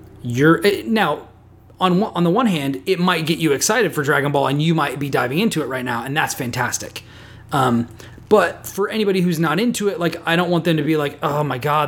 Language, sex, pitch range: English, male, 130-165 Hz